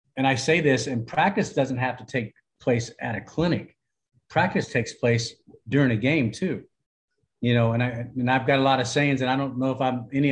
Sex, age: male, 50-69